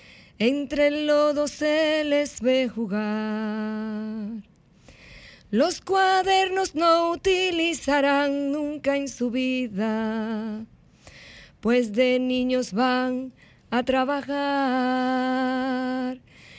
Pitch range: 240-330 Hz